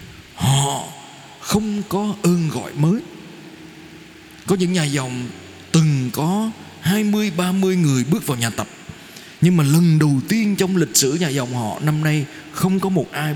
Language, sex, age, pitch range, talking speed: Vietnamese, male, 20-39, 130-180 Hz, 155 wpm